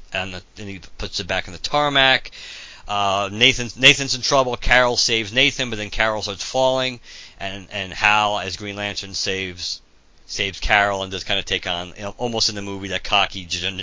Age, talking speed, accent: 50-69, 205 wpm, American